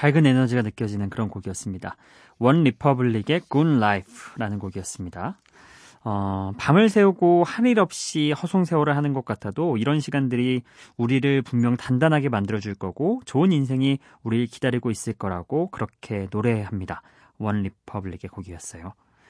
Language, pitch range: Korean, 110-165 Hz